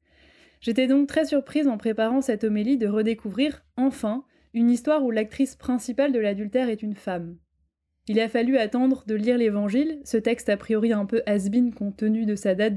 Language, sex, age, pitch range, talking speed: French, female, 20-39, 210-255 Hz, 190 wpm